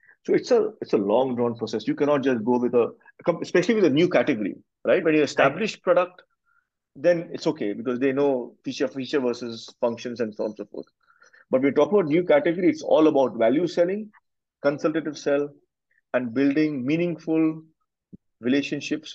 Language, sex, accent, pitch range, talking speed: Hindi, male, native, 130-175 Hz, 180 wpm